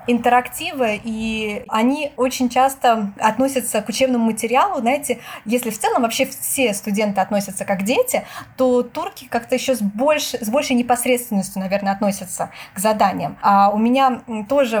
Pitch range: 210-255 Hz